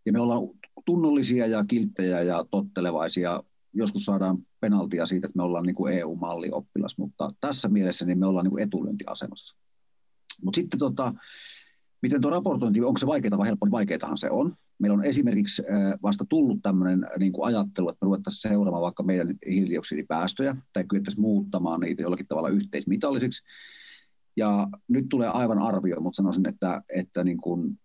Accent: native